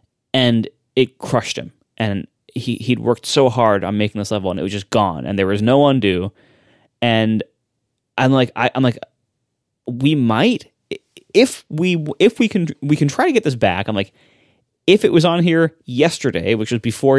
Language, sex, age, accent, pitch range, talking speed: English, male, 20-39, American, 115-170 Hz, 190 wpm